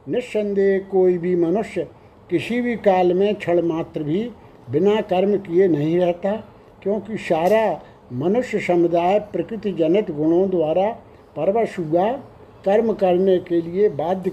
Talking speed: 120 wpm